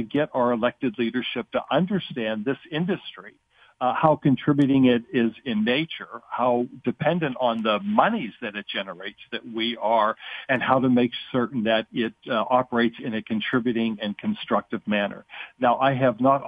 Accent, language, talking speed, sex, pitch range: American, English, 170 wpm, male, 115-140 Hz